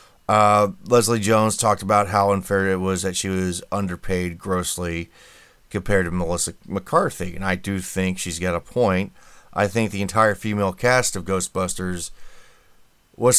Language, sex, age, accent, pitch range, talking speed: English, male, 30-49, American, 95-120 Hz, 155 wpm